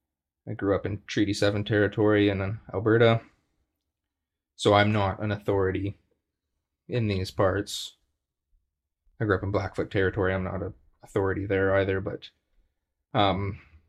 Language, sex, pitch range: English, male, 85-105 Hz